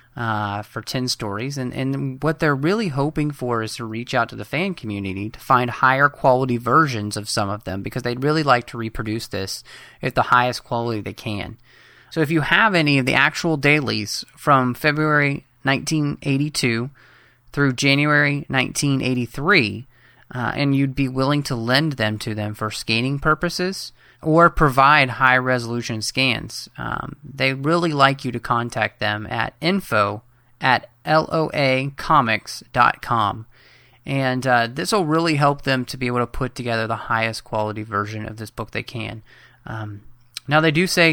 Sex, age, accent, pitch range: male, 30-49, American, 115-145 Hz